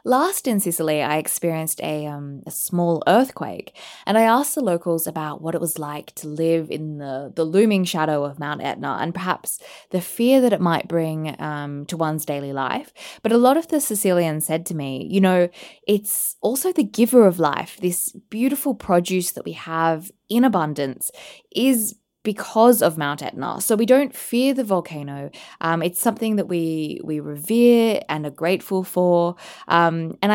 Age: 20-39